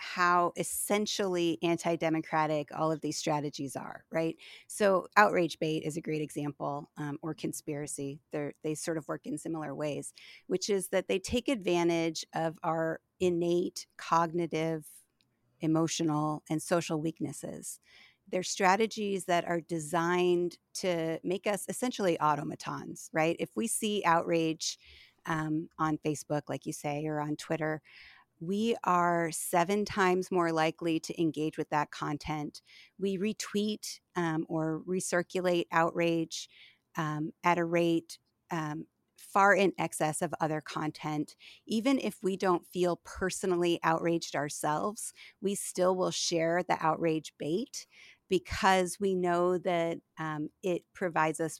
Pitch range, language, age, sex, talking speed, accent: 155-180 Hz, English, 30-49, female, 135 wpm, American